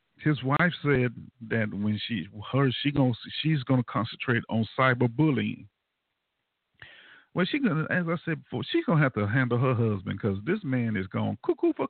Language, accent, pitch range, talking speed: English, American, 110-155 Hz, 175 wpm